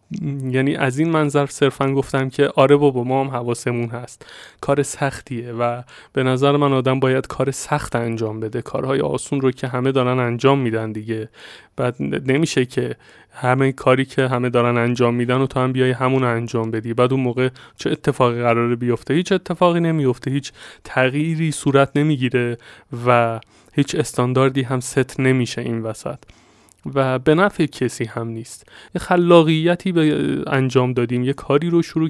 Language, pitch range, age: Persian, 125-140 Hz, 20-39